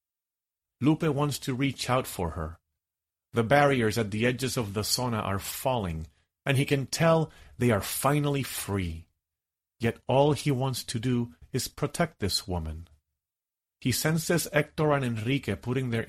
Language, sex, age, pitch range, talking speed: English, male, 40-59, 80-130 Hz, 155 wpm